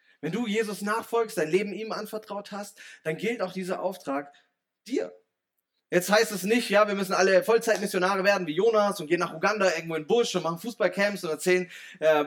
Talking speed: 200 wpm